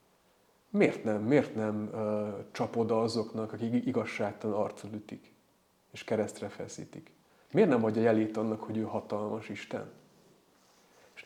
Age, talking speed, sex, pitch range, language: 30-49, 125 wpm, male, 105-125 Hz, Hungarian